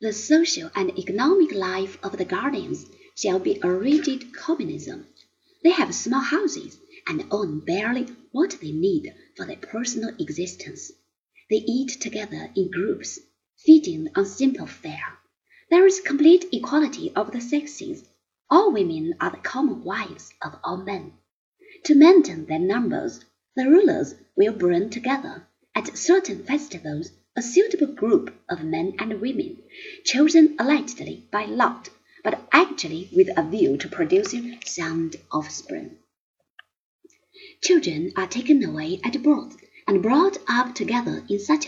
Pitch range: 225-350 Hz